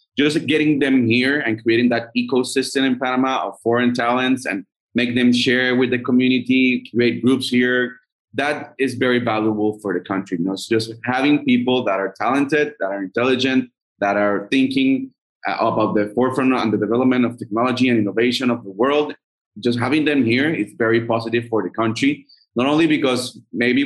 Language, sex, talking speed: English, male, 175 wpm